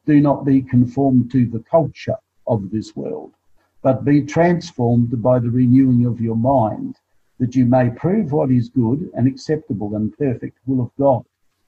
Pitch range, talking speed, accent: 120-145 Hz, 170 wpm, Australian